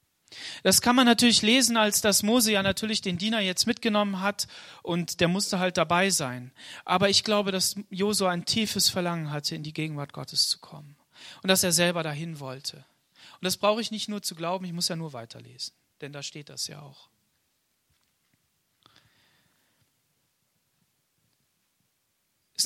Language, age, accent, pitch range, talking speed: German, 30-49, German, 155-210 Hz, 165 wpm